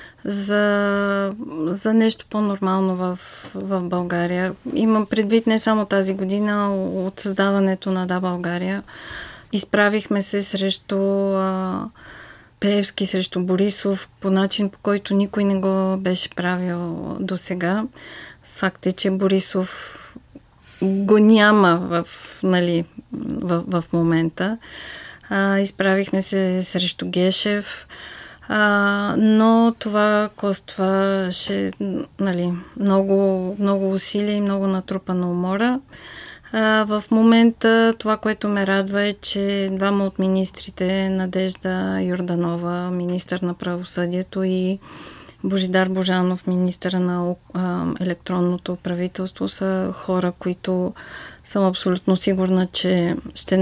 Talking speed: 105 wpm